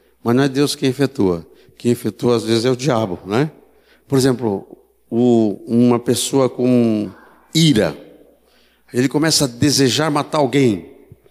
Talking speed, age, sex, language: 145 wpm, 60-79, male, Portuguese